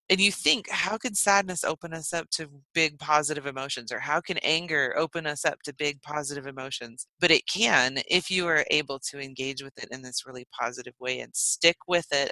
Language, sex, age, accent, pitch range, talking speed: English, female, 30-49, American, 135-175 Hz, 215 wpm